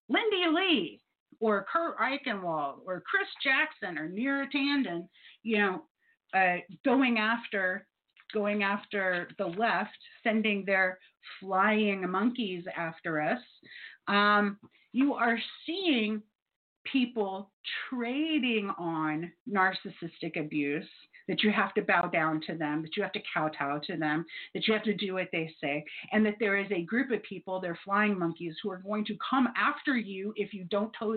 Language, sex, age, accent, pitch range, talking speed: English, female, 40-59, American, 185-255 Hz, 150 wpm